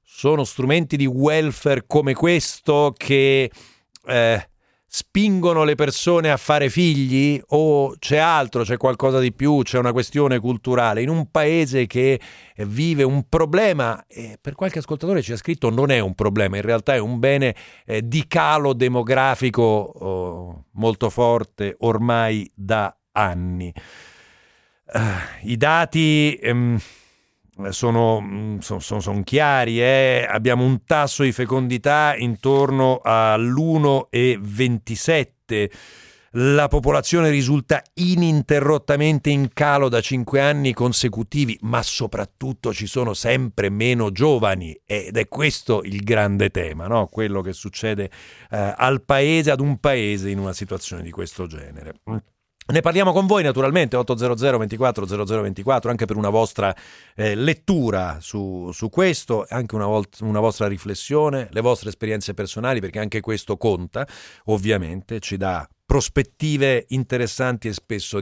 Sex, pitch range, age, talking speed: male, 105-140 Hz, 50-69, 130 wpm